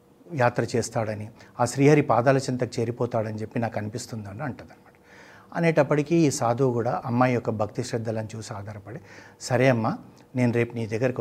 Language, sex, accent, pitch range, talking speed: Telugu, male, native, 115-135 Hz, 150 wpm